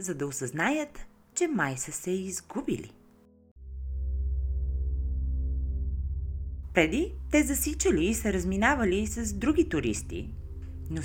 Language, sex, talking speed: Bulgarian, female, 100 wpm